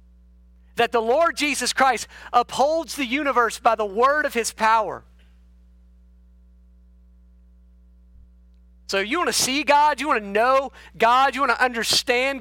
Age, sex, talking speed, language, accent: 40-59, male, 140 wpm, English, American